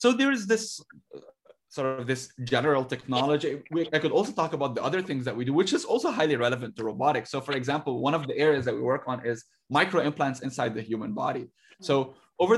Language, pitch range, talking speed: English, 125-155 Hz, 225 wpm